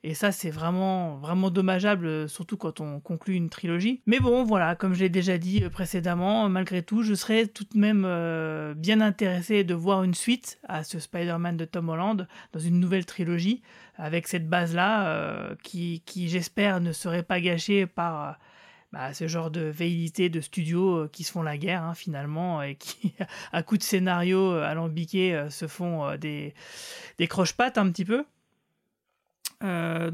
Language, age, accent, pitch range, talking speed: French, 30-49, French, 170-210 Hz, 170 wpm